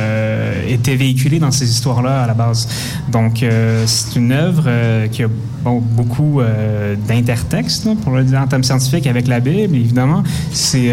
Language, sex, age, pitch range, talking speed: French, male, 20-39, 120-150 Hz, 170 wpm